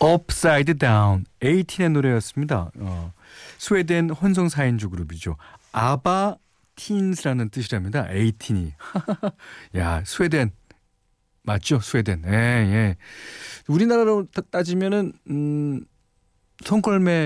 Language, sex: Korean, male